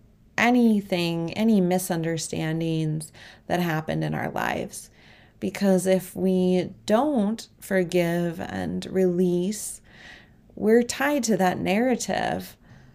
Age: 30-49